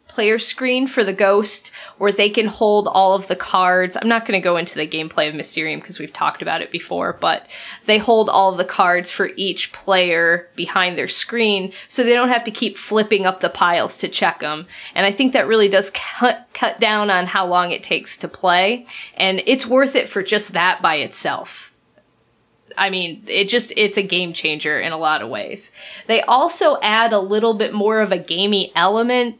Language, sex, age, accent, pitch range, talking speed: English, female, 20-39, American, 185-225 Hz, 210 wpm